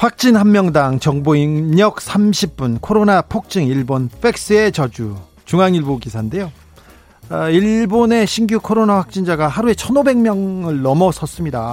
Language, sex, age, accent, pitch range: Korean, male, 40-59, native, 135-210 Hz